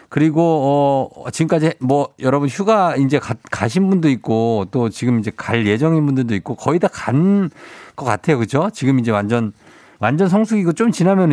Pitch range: 105-150 Hz